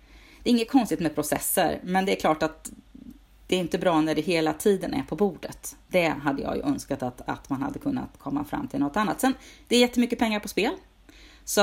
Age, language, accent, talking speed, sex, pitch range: 30-49, Swedish, native, 220 wpm, female, 160-230 Hz